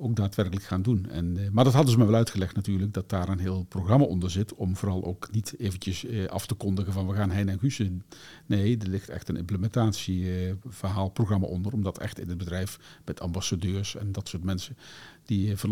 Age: 50-69